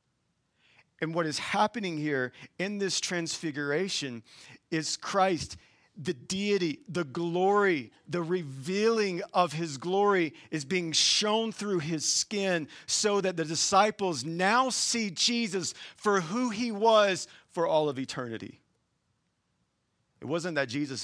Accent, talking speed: American, 125 wpm